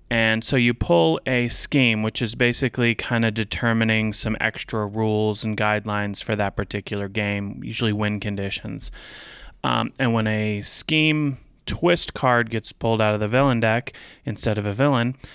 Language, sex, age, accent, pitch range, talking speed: English, male, 30-49, American, 105-120 Hz, 165 wpm